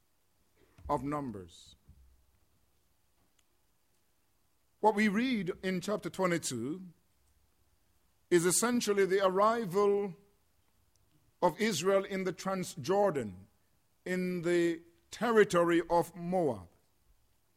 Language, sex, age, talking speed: English, male, 50-69, 75 wpm